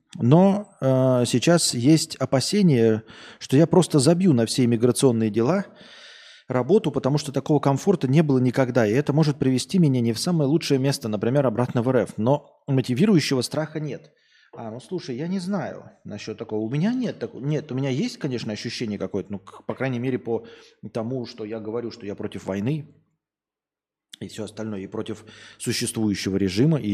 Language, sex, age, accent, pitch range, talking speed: Russian, male, 20-39, native, 110-155 Hz, 175 wpm